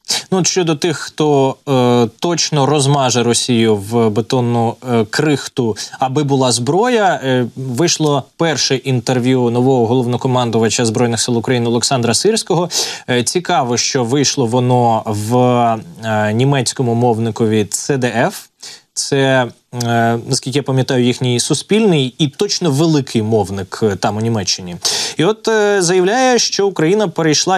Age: 20-39